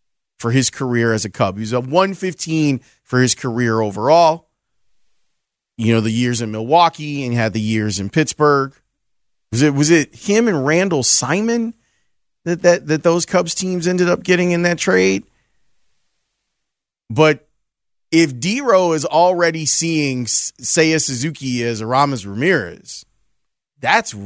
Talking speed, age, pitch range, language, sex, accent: 145 wpm, 30-49, 120-165 Hz, English, male, American